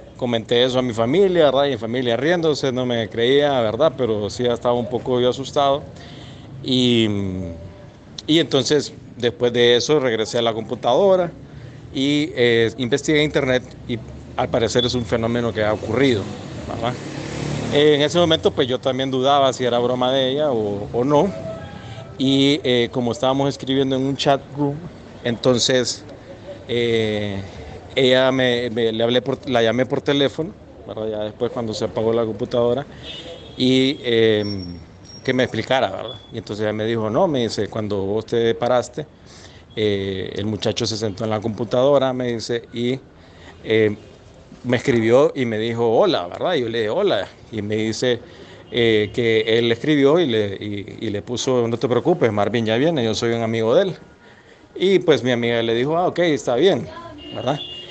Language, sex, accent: Spanish, male, Mexican